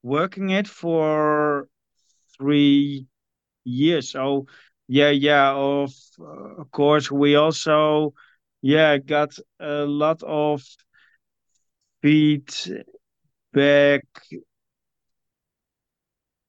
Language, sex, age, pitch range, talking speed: English, male, 50-69, 130-150 Hz, 75 wpm